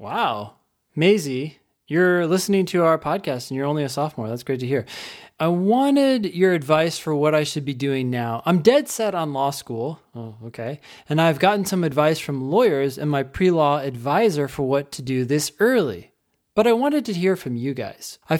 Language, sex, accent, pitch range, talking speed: English, male, American, 140-195 Hz, 200 wpm